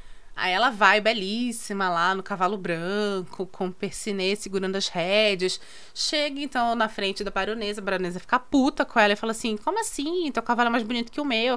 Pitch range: 205-280 Hz